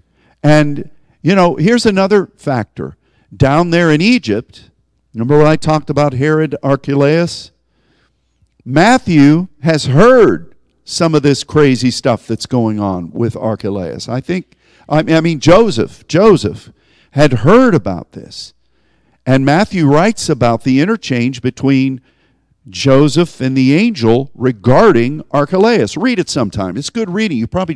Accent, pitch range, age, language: American, 120-175 Hz, 50-69, English